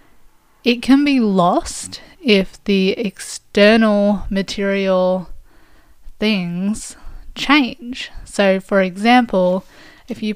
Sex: female